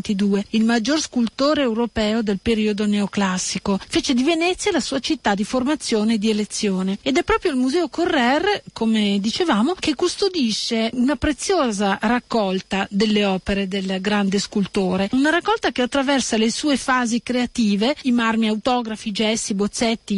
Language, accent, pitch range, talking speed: Italian, native, 210-255 Hz, 145 wpm